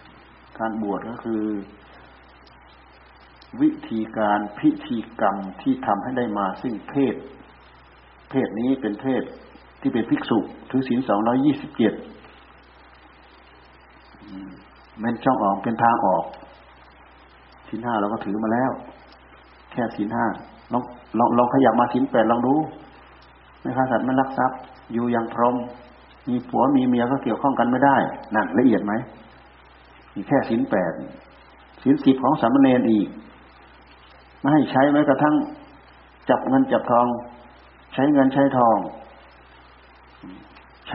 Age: 60-79